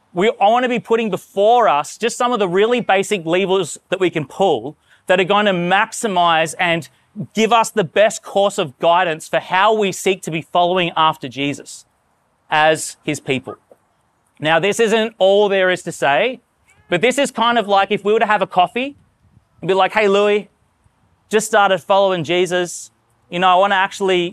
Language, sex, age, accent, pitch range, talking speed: English, male, 30-49, Australian, 145-200 Hz, 185 wpm